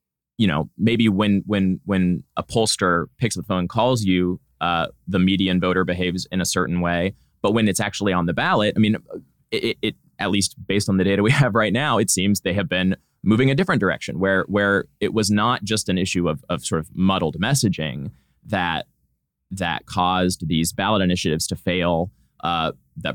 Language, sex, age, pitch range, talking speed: English, male, 20-39, 90-115 Hz, 200 wpm